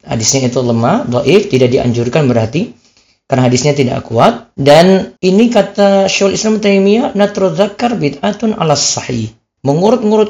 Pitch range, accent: 125-185 Hz, native